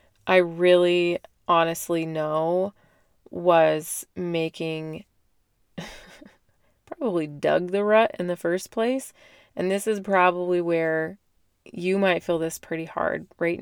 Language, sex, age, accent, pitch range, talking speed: English, female, 20-39, American, 160-195 Hz, 115 wpm